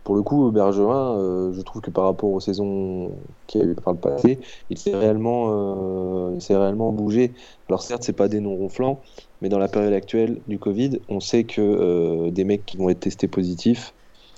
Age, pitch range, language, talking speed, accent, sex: 20-39, 90-105 Hz, French, 215 wpm, French, male